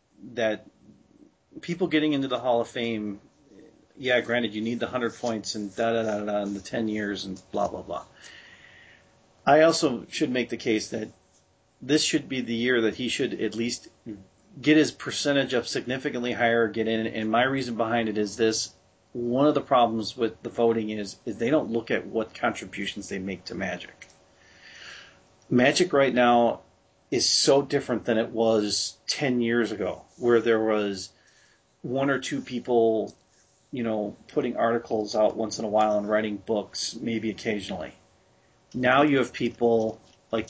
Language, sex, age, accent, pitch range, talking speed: English, male, 40-59, American, 105-125 Hz, 170 wpm